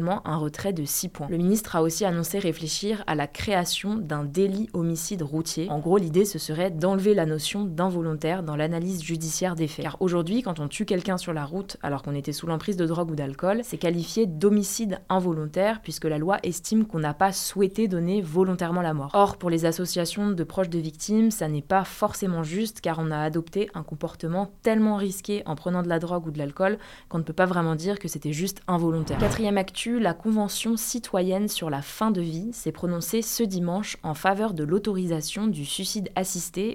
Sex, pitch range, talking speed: female, 160-200 Hz, 205 wpm